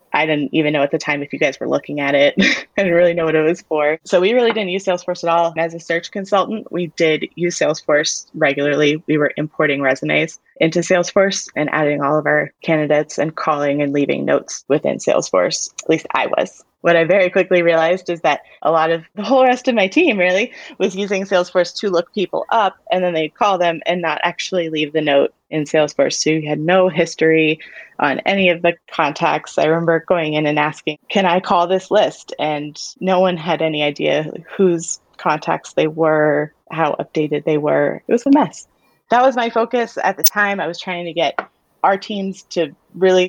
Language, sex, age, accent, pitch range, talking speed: English, female, 20-39, American, 155-195 Hz, 215 wpm